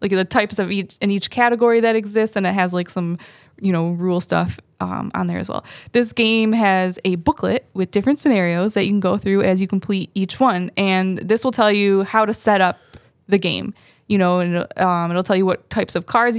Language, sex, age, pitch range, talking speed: English, female, 20-39, 185-215 Hz, 225 wpm